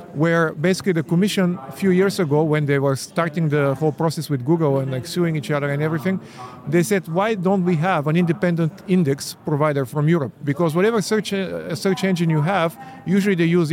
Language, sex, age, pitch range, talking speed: Finnish, male, 50-69, 150-190 Hz, 205 wpm